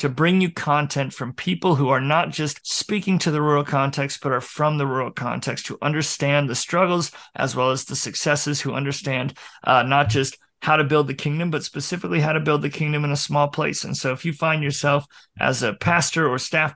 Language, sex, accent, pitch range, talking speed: English, male, American, 140-160 Hz, 220 wpm